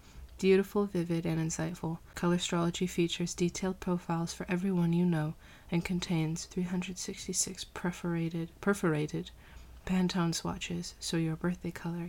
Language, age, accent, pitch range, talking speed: English, 20-39, American, 160-190 Hz, 120 wpm